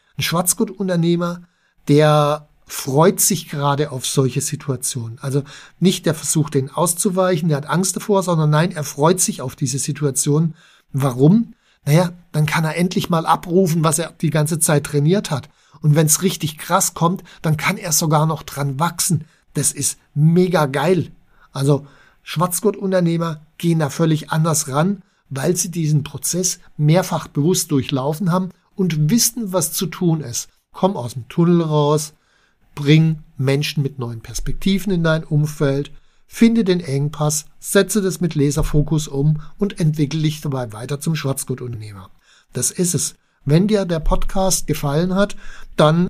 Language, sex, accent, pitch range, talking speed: German, male, German, 145-180 Hz, 155 wpm